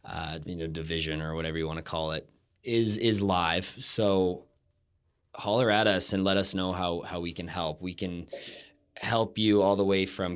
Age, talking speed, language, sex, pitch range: 20-39, 205 wpm, English, male, 80-95 Hz